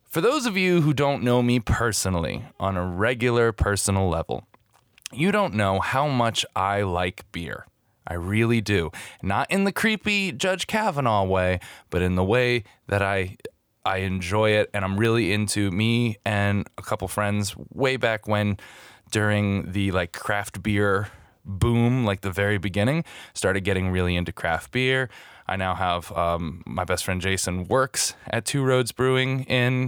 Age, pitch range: 20-39, 95-125 Hz